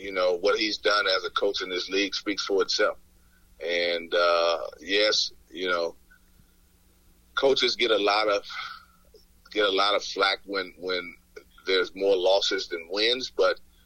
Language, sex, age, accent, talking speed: English, male, 40-59, American, 160 wpm